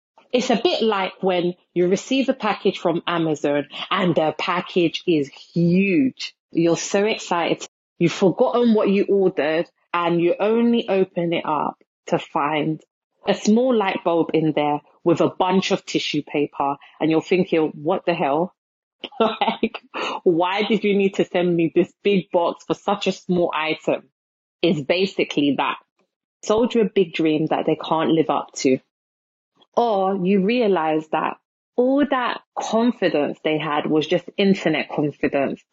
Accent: British